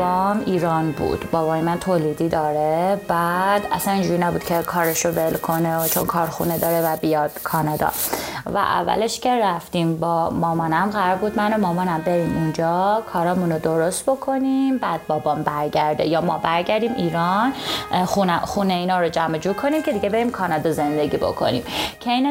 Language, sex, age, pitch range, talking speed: Persian, female, 20-39, 160-205 Hz, 160 wpm